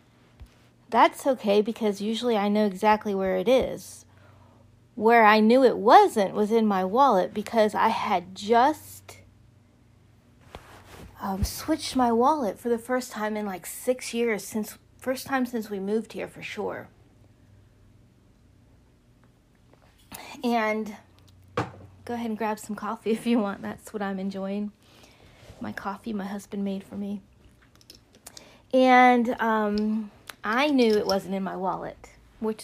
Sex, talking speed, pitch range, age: female, 140 wpm, 190-255 Hz, 40-59